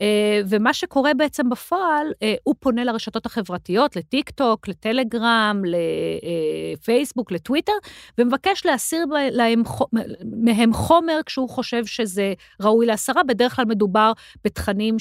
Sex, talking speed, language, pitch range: female, 100 wpm, Hebrew, 205-265 Hz